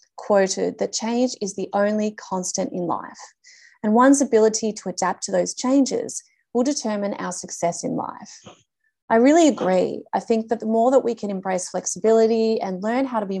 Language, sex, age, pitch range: English, female, 30-49, 190-245 Hz